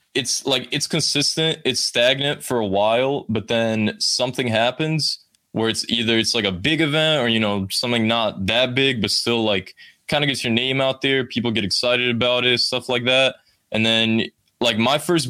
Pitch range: 105-130 Hz